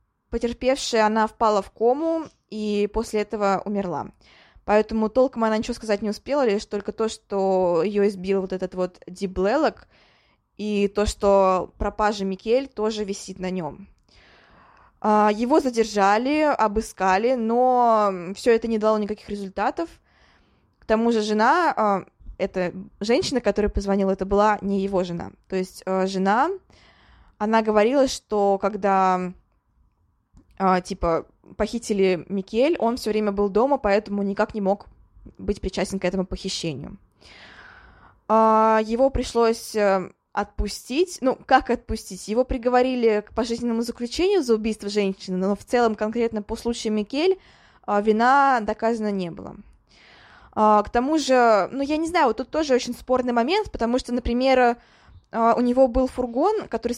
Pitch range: 200-240 Hz